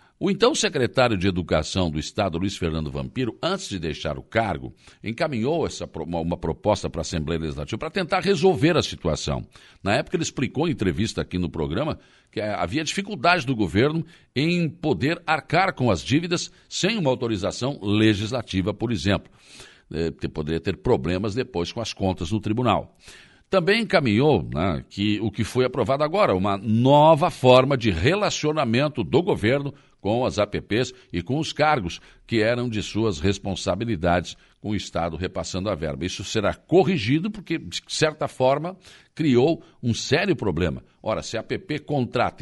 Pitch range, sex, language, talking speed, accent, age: 90-140 Hz, male, Portuguese, 165 wpm, Brazilian, 60-79